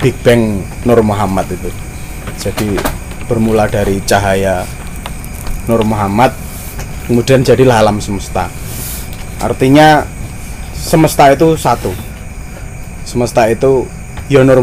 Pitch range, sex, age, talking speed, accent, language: 95-140 Hz, male, 20-39, 95 wpm, native, Indonesian